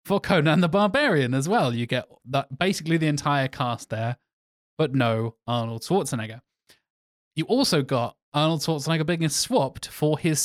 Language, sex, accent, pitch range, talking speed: English, male, British, 125-155 Hz, 155 wpm